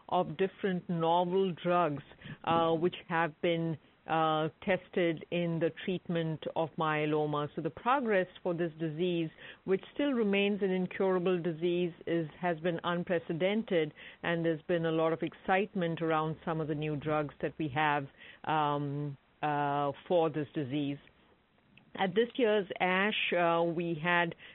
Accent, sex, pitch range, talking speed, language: Indian, female, 165-190 Hz, 145 wpm, English